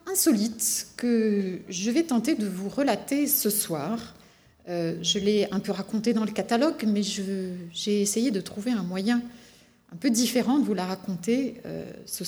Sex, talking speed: female, 175 wpm